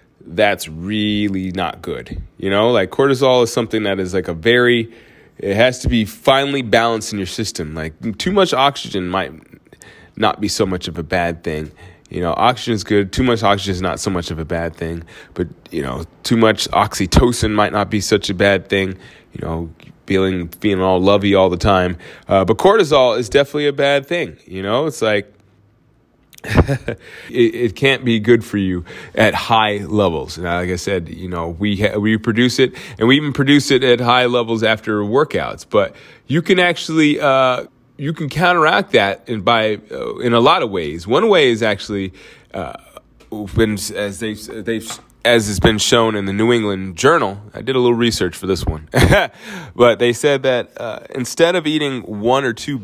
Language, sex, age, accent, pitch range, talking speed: English, male, 20-39, American, 95-125 Hz, 195 wpm